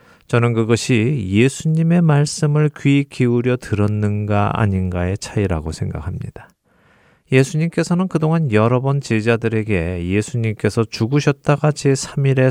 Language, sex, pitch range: Korean, male, 105-140 Hz